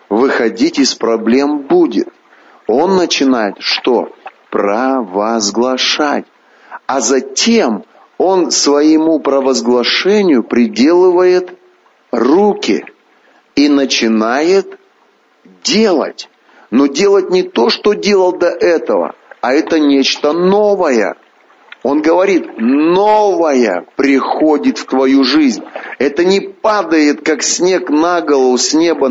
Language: Russian